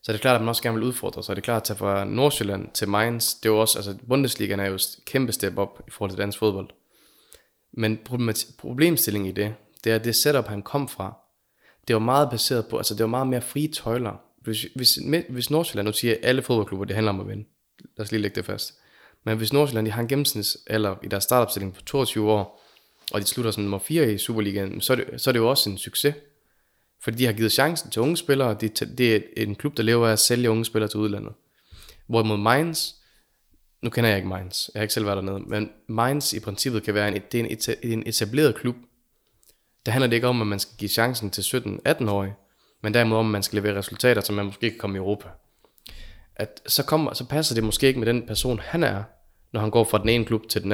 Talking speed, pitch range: 240 wpm, 105-125 Hz